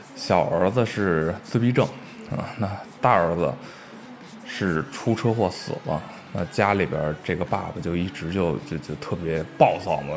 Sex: male